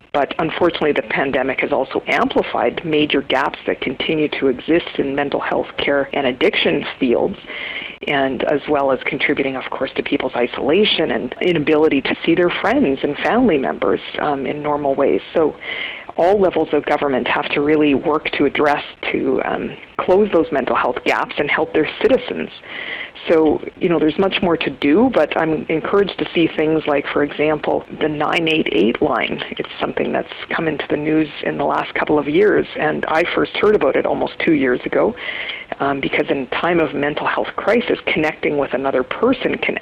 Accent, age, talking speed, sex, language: American, 50-69, 180 wpm, female, English